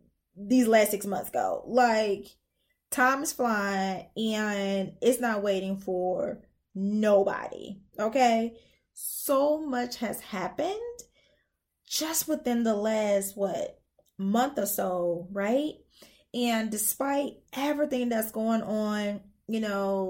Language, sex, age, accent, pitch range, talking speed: English, female, 20-39, American, 200-245 Hz, 110 wpm